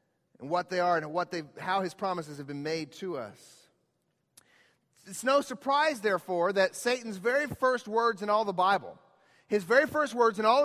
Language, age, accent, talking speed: English, 40-59, American, 185 wpm